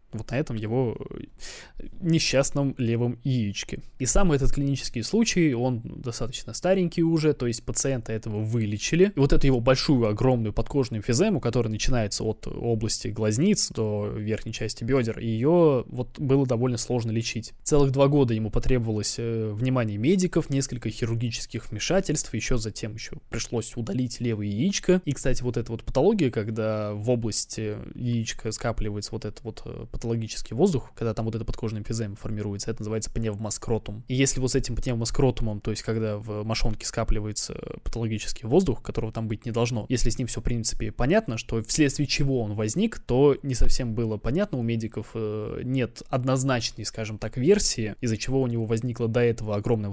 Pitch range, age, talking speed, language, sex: 110-135 Hz, 20-39, 165 wpm, Russian, male